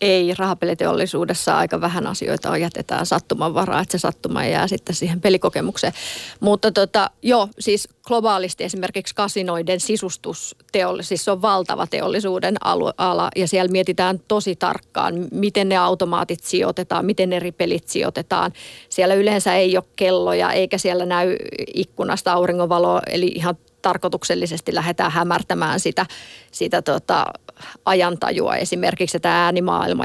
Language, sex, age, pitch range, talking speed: Finnish, female, 30-49, 185-200 Hz, 125 wpm